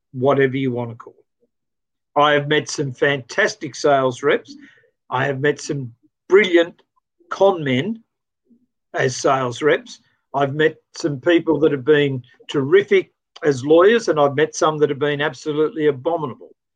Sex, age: male, 50-69